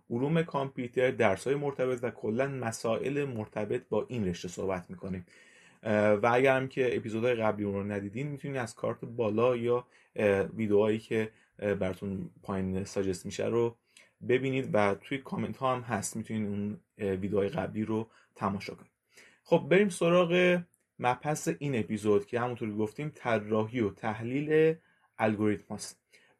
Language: Persian